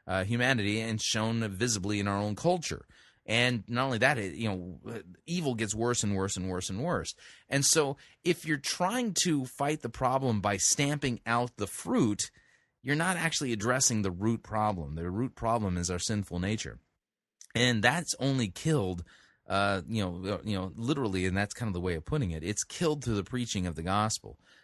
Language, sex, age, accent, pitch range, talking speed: English, male, 30-49, American, 100-135 Hz, 190 wpm